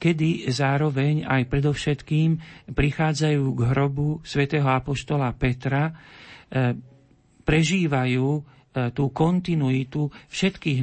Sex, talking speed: male, 80 wpm